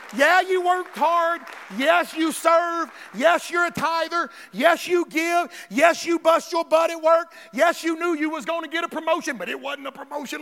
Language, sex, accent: English, male, American